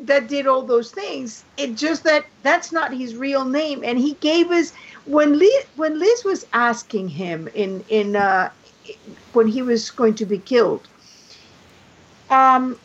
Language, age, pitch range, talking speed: English, 50-69, 205-285 Hz, 165 wpm